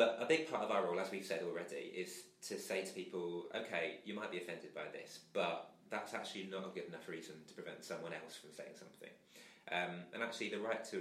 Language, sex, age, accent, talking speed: English, male, 20-39, British, 240 wpm